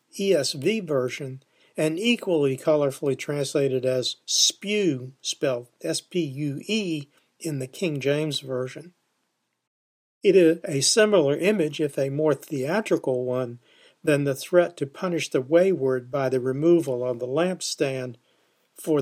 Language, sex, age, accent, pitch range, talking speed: English, male, 50-69, American, 135-175 Hz, 125 wpm